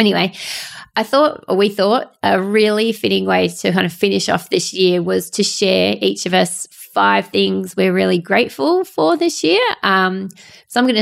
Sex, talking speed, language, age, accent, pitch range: female, 190 wpm, English, 20-39, Australian, 175-205 Hz